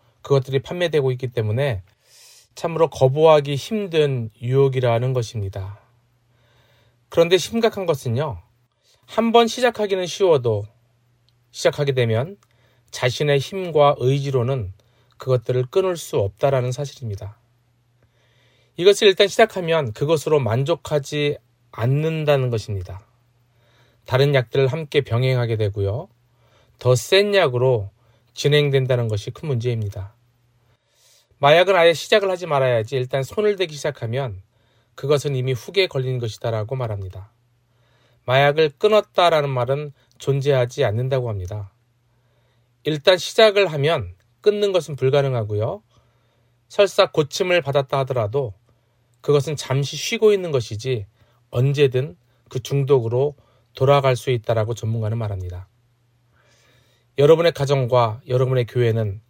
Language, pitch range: Korean, 120-145 Hz